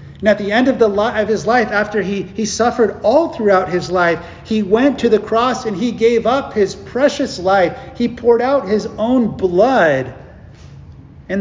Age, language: 40-59, English